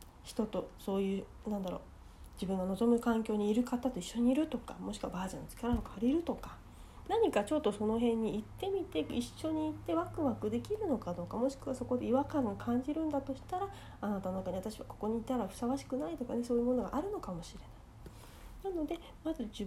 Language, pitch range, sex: Japanese, 210-280 Hz, female